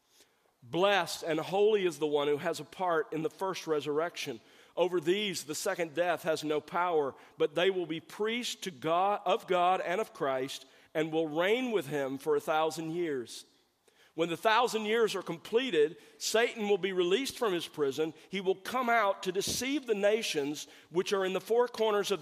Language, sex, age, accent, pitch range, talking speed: English, male, 40-59, American, 150-200 Hz, 185 wpm